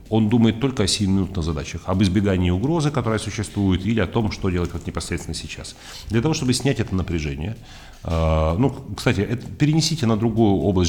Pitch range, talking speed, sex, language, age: 90-115 Hz, 180 wpm, male, Russian, 40-59